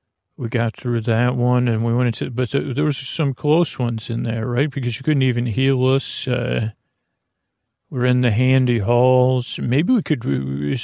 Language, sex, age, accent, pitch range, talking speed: English, male, 40-59, American, 115-135 Hz, 190 wpm